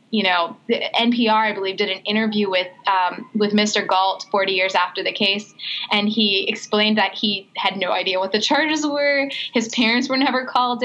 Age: 20-39